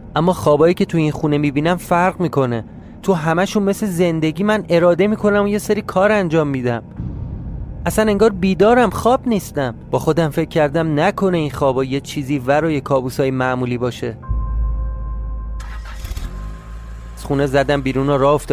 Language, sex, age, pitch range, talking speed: Persian, male, 30-49, 120-160 Hz, 155 wpm